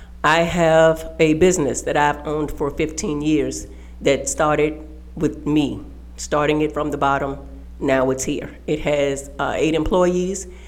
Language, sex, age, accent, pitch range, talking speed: English, female, 40-59, American, 145-170 Hz, 150 wpm